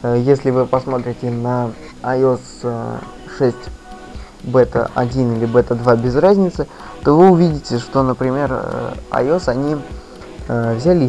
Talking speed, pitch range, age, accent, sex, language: 115 wpm, 120-135 Hz, 20-39, native, male, Russian